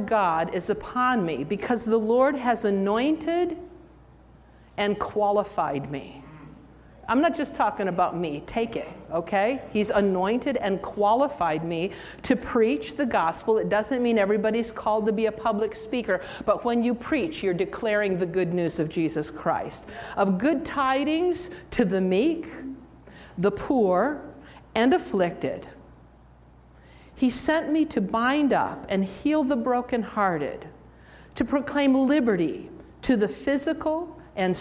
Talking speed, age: 135 wpm, 50-69